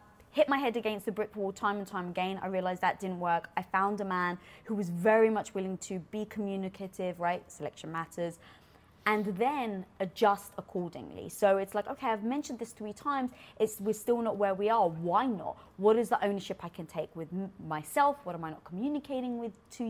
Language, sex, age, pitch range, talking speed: English, female, 20-39, 190-270 Hz, 210 wpm